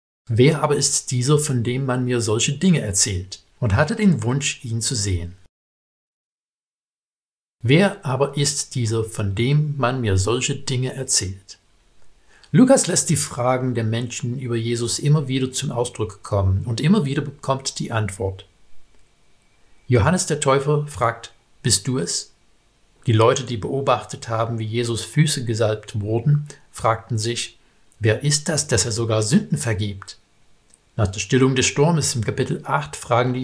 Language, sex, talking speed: German, male, 155 wpm